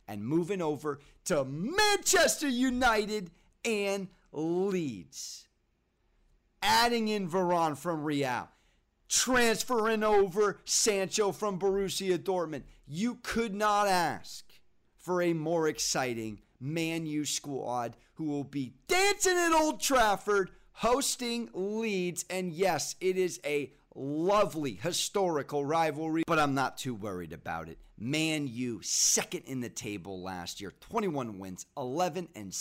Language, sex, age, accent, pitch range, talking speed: English, male, 40-59, American, 135-200 Hz, 120 wpm